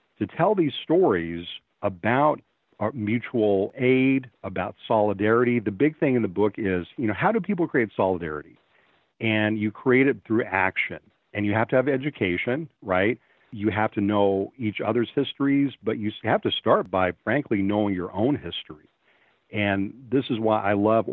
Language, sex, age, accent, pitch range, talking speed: English, male, 50-69, American, 100-130 Hz, 175 wpm